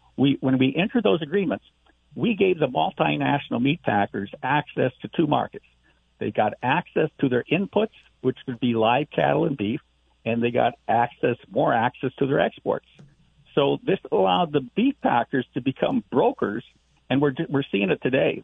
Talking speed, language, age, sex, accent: 175 wpm, English, 50-69, male, American